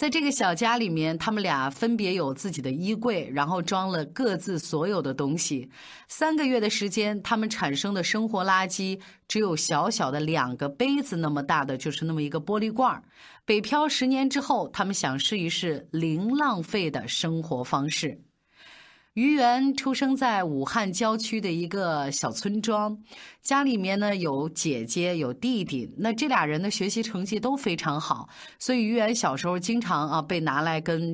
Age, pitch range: 30-49, 160-235 Hz